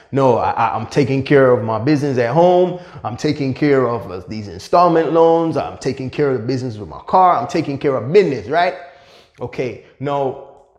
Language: English